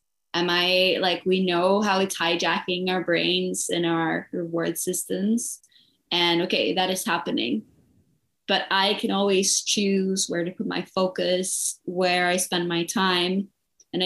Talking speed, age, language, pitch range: 150 wpm, 20-39, English, 170-195 Hz